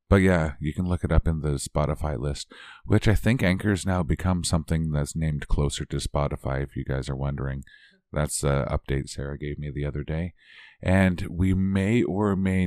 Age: 40-59